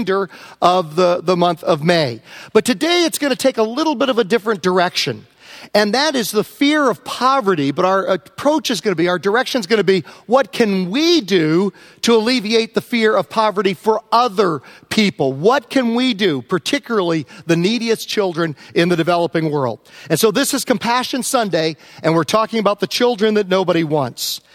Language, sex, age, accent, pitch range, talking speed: English, male, 40-59, American, 175-240 Hz, 195 wpm